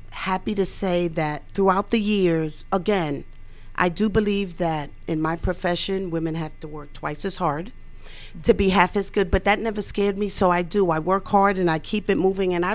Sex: female